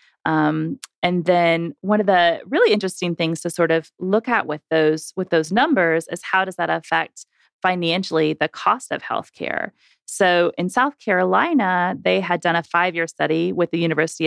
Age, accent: 30-49, American